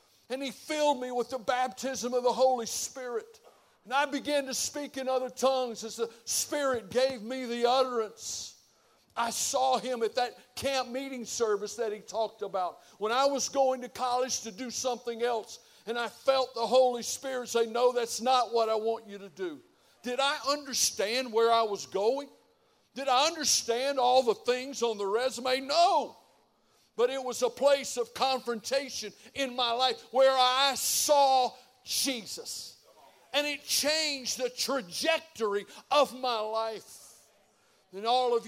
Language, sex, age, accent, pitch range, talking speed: English, male, 60-79, American, 230-260 Hz, 165 wpm